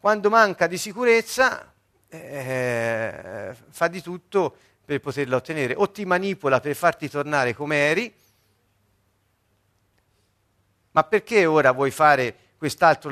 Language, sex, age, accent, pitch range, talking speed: Italian, male, 50-69, native, 120-190 Hz, 115 wpm